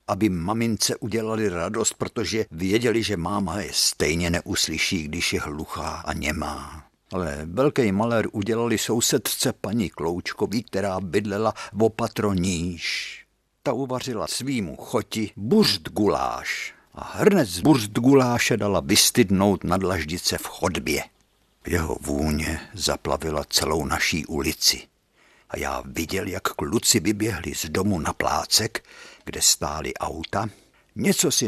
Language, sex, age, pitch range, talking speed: Czech, male, 60-79, 85-120 Hz, 120 wpm